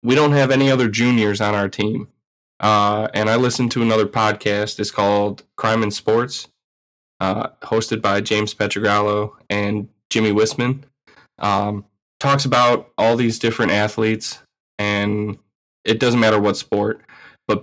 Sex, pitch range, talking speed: male, 105-125 Hz, 145 wpm